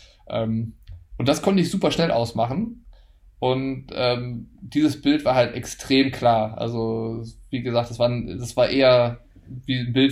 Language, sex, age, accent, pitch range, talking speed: German, male, 20-39, German, 115-135 Hz, 150 wpm